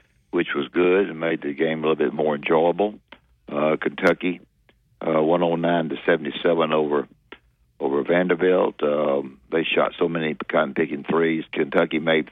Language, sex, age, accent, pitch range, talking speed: English, male, 60-79, American, 75-85 Hz, 150 wpm